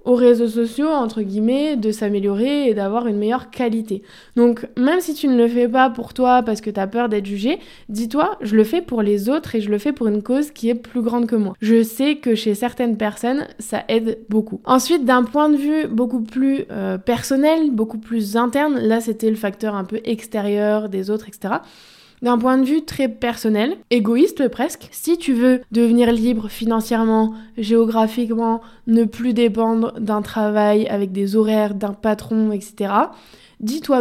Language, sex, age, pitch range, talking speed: French, female, 20-39, 215-250 Hz, 190 wpm